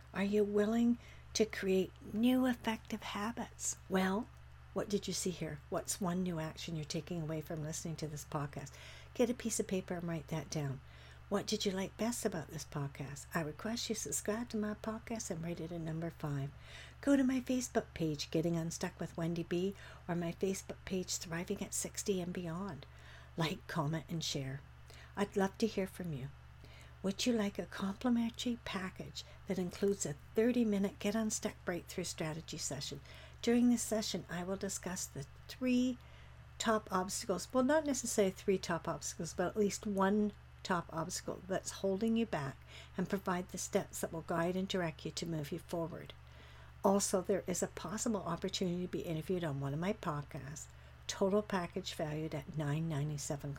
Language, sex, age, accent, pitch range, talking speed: English, female, 60-79, American, 155-205 Hz, 180 wpm